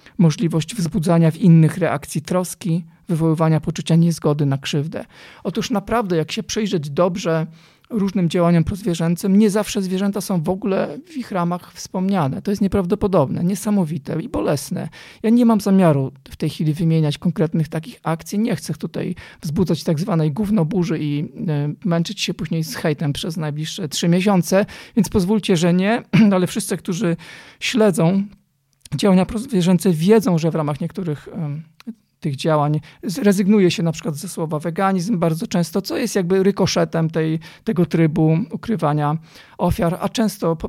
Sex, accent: male, native